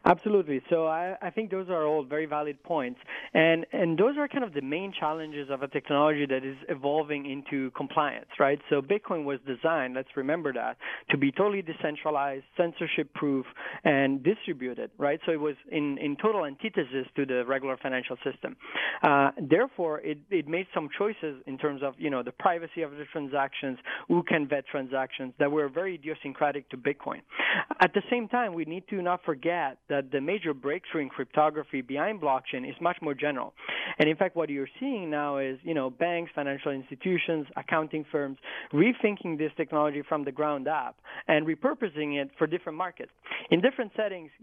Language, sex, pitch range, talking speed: English, male, 140-170 Hz, 180 wpm